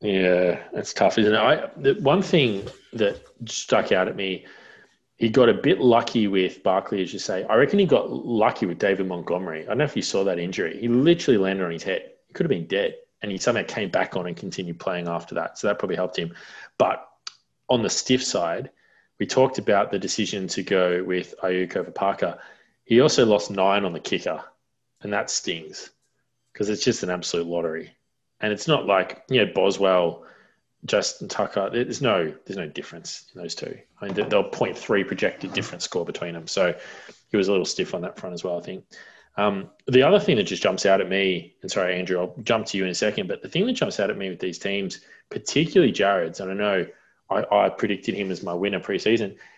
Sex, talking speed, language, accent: male, 220 wpm, English, Australian